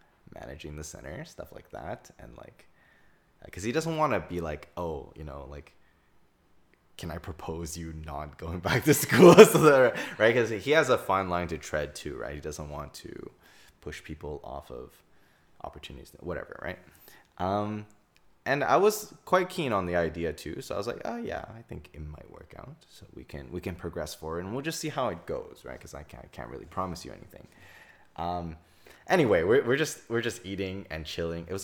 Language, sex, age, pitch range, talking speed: English, male, 20-39, 85-120 Hz, 200 wpm